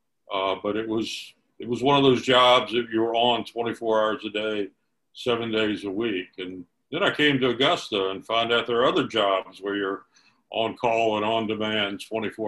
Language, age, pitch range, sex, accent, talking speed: English, 50-69, 100-120 Hz, male, American, 205 wpm